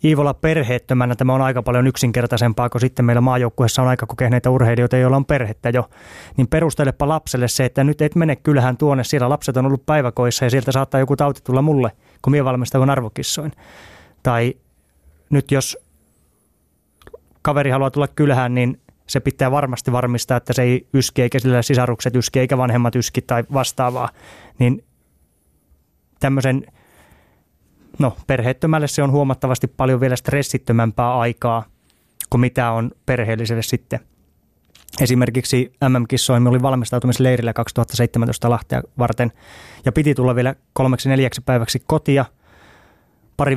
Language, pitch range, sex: Finnish, 120-135 Hz, male